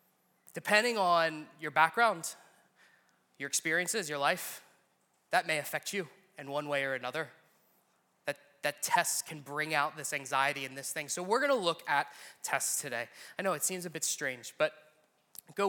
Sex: male